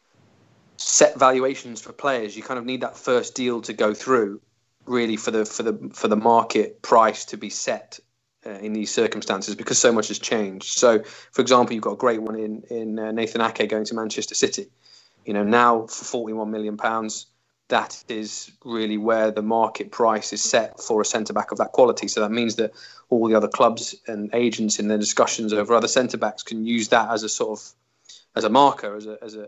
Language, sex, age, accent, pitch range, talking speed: English, male, 20-39, British, 110-120 Hz, 210 wpm